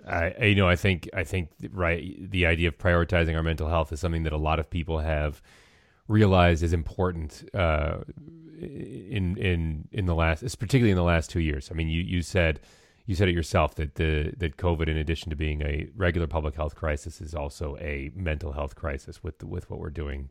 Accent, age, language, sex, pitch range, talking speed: American, 30-49, English, male, 75-90 Hz, 210 wpm